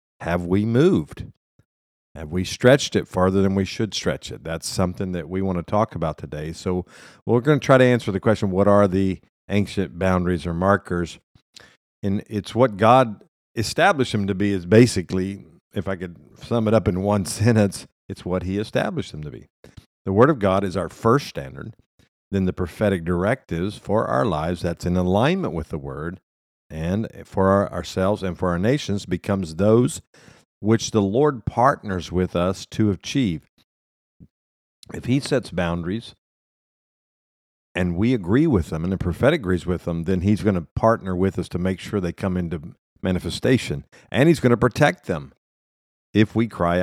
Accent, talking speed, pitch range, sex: American, 180 wpm, 85-110 Hz, male